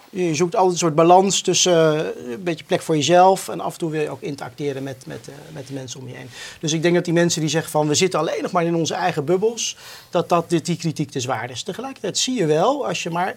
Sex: male